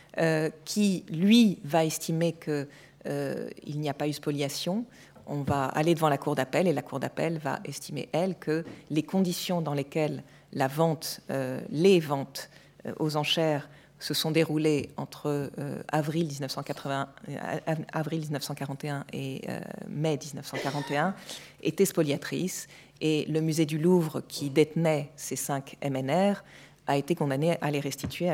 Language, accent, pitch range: French, French, 145-175 Hz